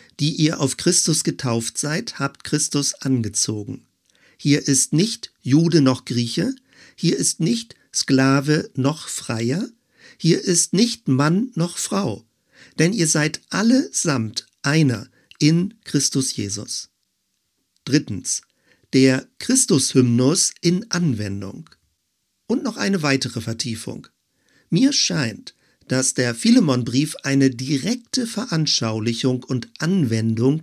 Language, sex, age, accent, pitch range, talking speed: German, male, 50-69, German, 120-170 Hz, 110 wpm